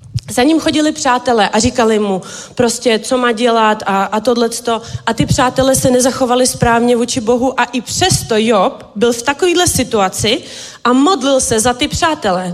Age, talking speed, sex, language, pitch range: 30-49, 170 wpm, female, Czech, 210-255 Hz